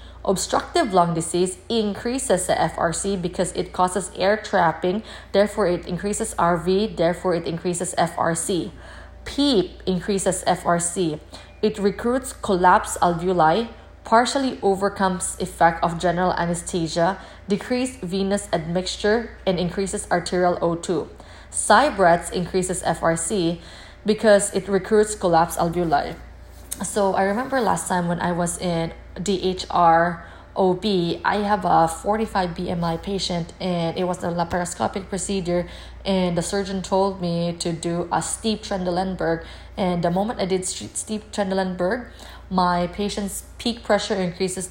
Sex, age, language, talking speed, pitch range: female, 20-39, English, 130 wpm, 175-200 Hz